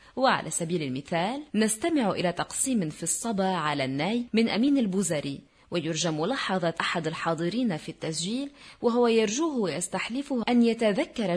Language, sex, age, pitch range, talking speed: Arabic, female, 30-49, 170-230 Hz, 125 wpm